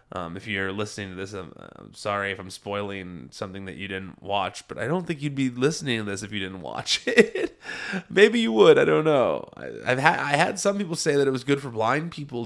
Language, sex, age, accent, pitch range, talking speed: English, male, 20-39, American, 110-175 Hz, 250 wpm